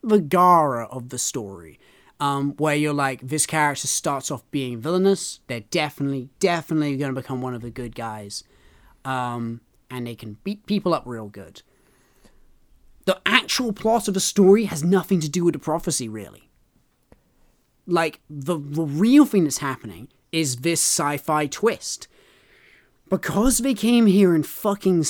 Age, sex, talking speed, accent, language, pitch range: 30-49, male, 160 wpm, British, English, 130-185 Hz